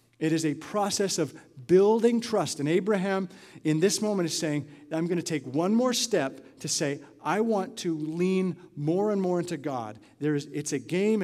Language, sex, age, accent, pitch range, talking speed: English, male, 50-69, American, 150-205 Hz, 185 wpm